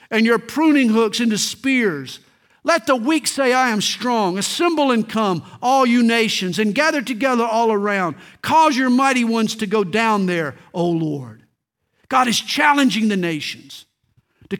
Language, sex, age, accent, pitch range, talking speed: English, male, 50-69, American, 175-270 Hz, 165 wpm